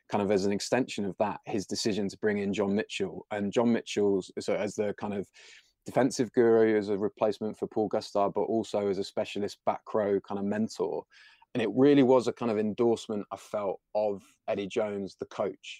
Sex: male